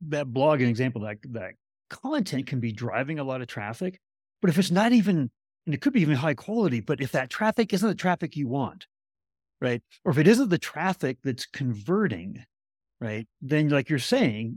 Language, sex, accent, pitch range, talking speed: English, male, American, 125-175 Hz, 200 wpm